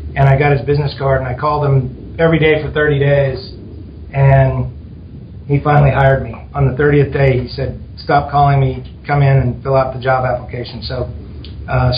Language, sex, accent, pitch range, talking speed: English, male, American, 125-145 Hz, 195 wpm